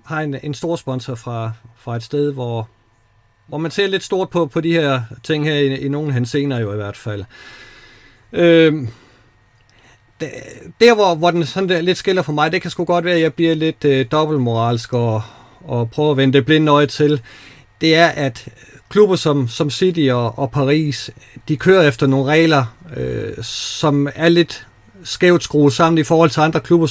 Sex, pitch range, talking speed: male, 120-165 Hz, 200 wpm